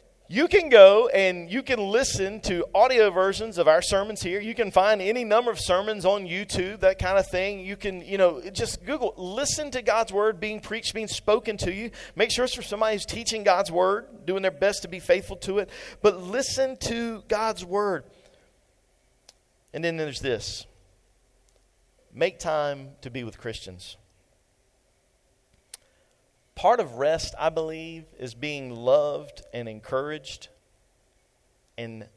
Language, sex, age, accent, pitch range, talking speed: English, male, 40-59, American, 125-195 Hz, 160 wpm